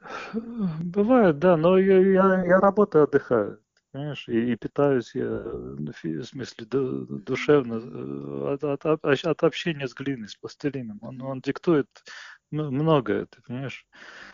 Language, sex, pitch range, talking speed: Russian, male, 115-150 Hz, 120 wpm